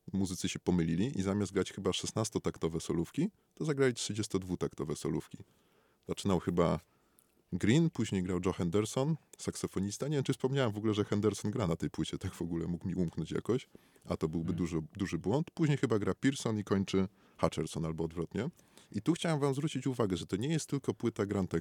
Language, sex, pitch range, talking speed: Polish, male, 85-115 Hz, 190 wpm